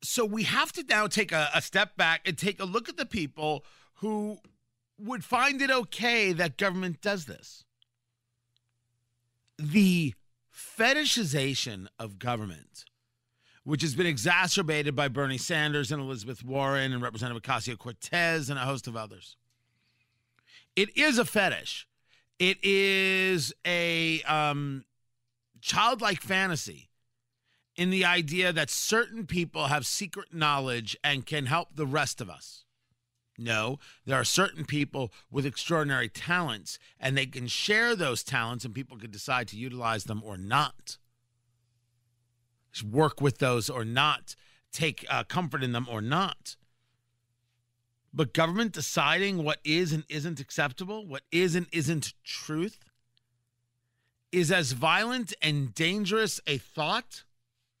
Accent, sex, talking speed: American, male, 135 wpm